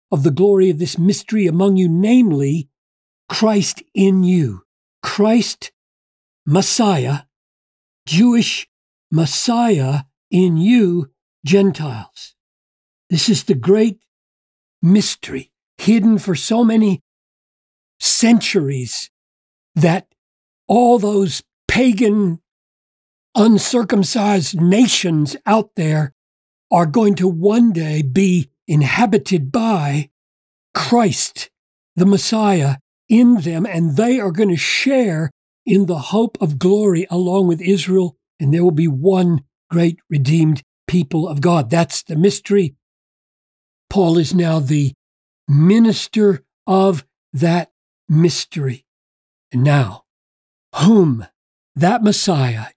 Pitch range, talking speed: 145-205 Hz, 100 wpm